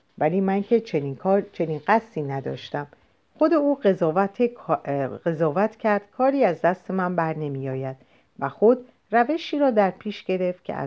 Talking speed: 145 wpm